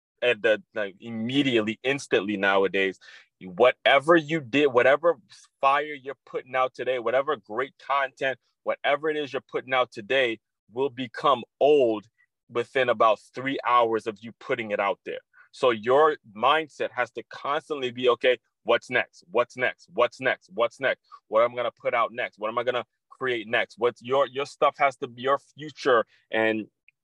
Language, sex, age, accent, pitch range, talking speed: English, male, 30-49, American, 115-140 Hz, 165 wpm